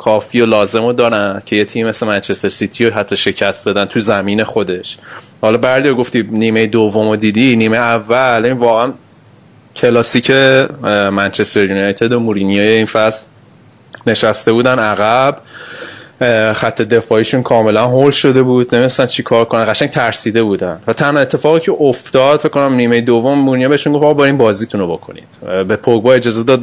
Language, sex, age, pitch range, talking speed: Persian, male, 20-39, 110-130 Hz, 160 wpm